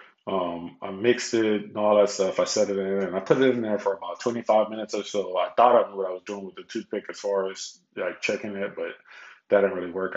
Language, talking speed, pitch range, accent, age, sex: English, 270 wpm, 95-110 Hz, American, 20-39, male